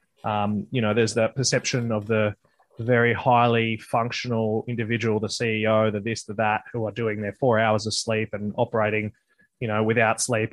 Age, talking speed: 20-39, 180 wpm